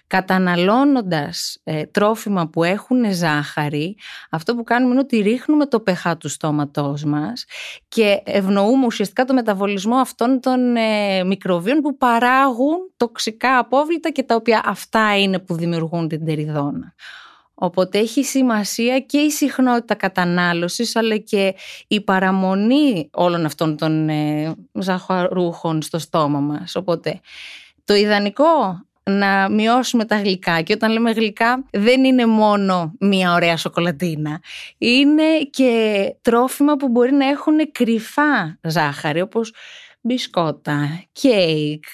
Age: 20-39